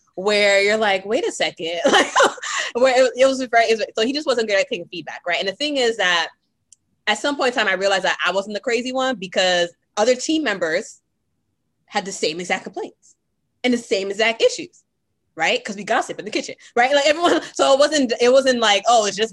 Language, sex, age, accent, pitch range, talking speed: English, female, 20-39, American, 175-235 Hz, 230 wpm